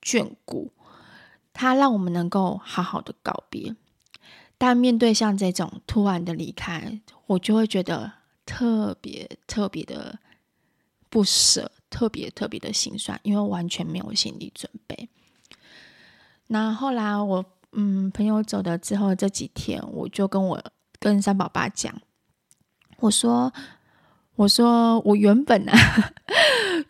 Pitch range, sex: 180-220 Hz, female